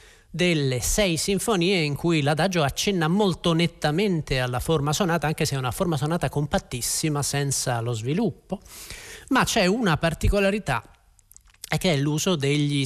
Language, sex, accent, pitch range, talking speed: Italian, male, native, 135-180 Hz, 145 wpm